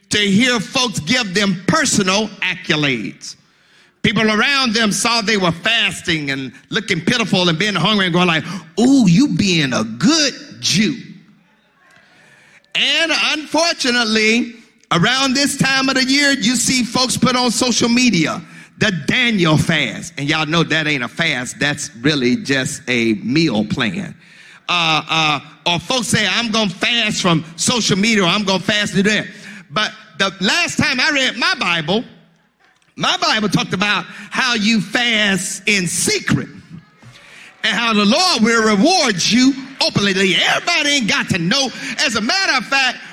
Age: 50-69